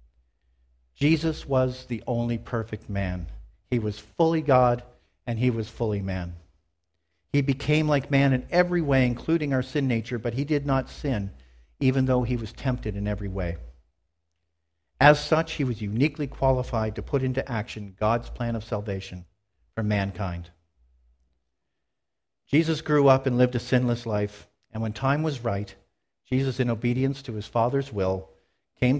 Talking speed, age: 155 wpm, 50-69